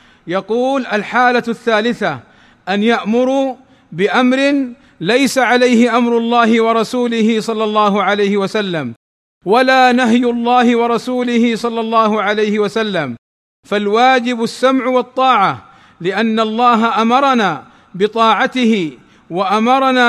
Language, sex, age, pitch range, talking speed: Arabic, male, 50-69, 220-250 Hz, 95 wpm